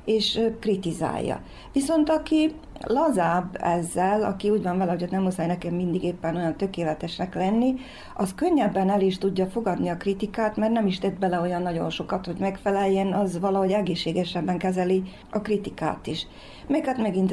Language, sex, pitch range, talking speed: Hungarian, female, 180-200 Hz, 165 wpm